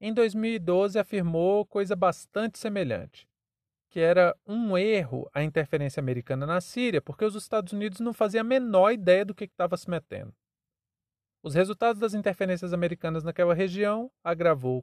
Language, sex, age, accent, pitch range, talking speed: Portuguese, male, 40-59, Brazilian, 145-205 Hz, 155 wpm